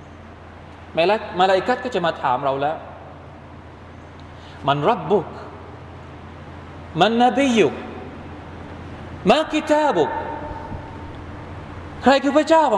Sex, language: male, Thai